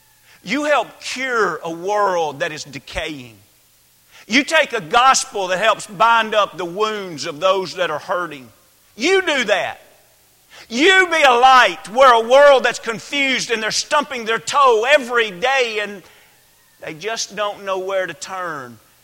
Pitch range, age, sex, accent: 150-230 Hz, 40-59, male, American